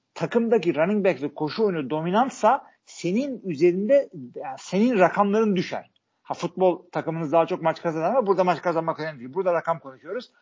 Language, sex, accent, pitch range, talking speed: Turkish, male, native, 155-205 Hz, 165 wpm